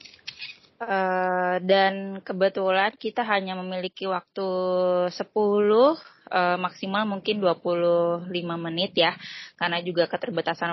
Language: Indonesian